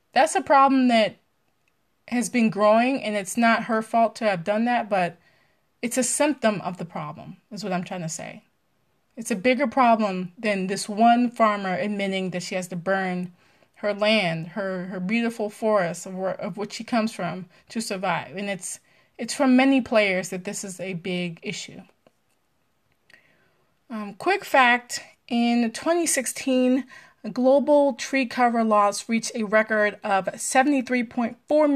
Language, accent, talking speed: English, American, 160 wpm